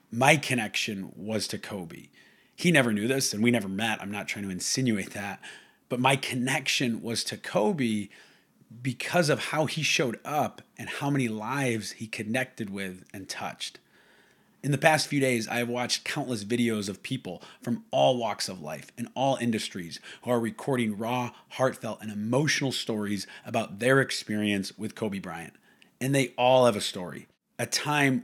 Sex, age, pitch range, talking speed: male, 30-49, 110-135 Hz, 175 wpm